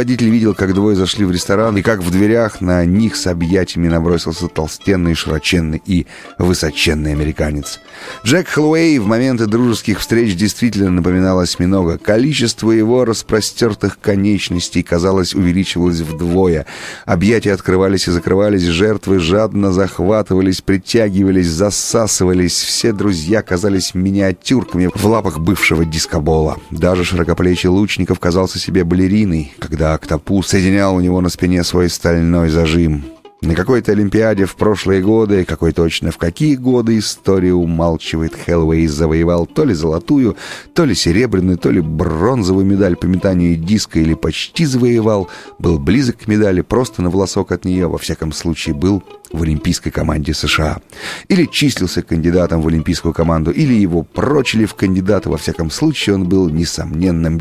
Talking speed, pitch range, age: 140 wpm, 85-105 Hz, 30-49